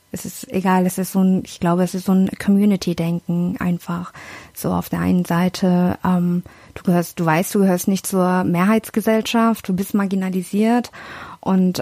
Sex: female